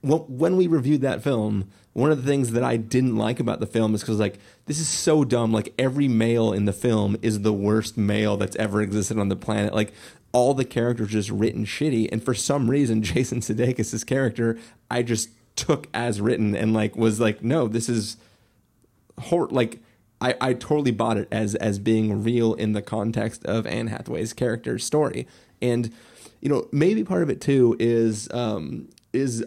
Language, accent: English, American